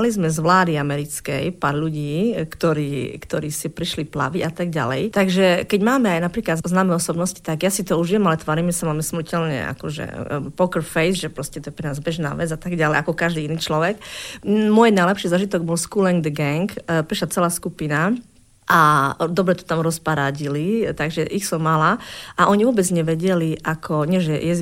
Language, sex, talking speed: Slovak, female, 190 wpm